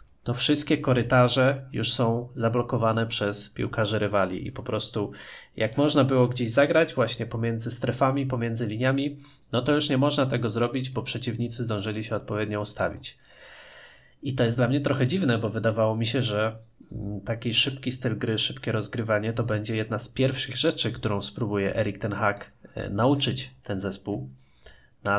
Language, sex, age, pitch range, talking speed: Polish, male, 20-39, 110-130 Hz, 160 wpm